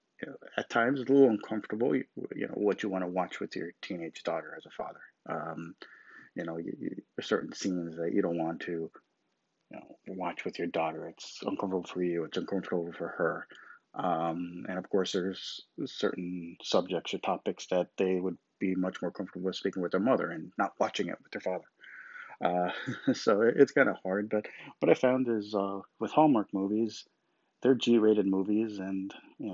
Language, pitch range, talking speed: English, 90-105 Hz, 205 wpm